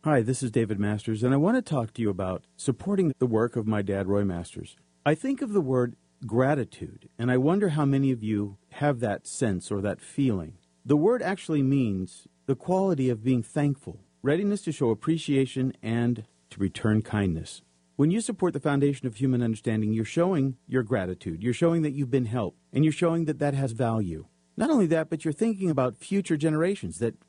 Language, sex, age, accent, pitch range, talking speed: English, male, 50-69, American, 110-150 Hz, 200 wpm